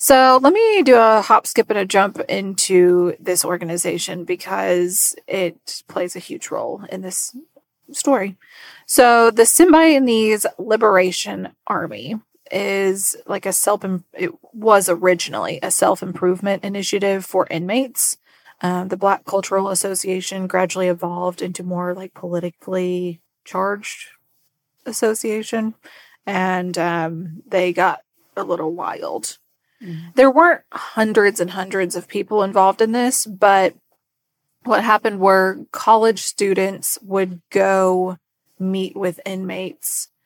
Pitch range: 180-220 Hz